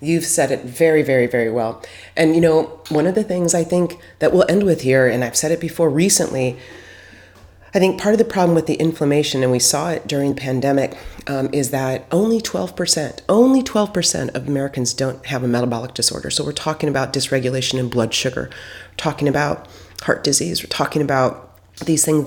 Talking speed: 205 wpm